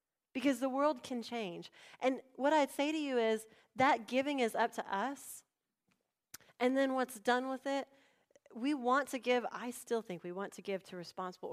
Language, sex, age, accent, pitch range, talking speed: English, female, 30-49, American, 205-270 Hz, 195 wpm